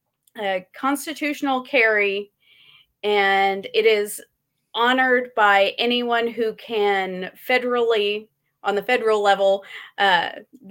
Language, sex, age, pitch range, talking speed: English, female, 30-49, 195-235 Hz, 95 wpm